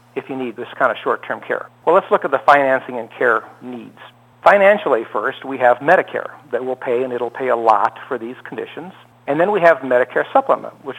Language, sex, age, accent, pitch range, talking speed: English, male, 60-79, American, 120-145 Hz, 220 wpm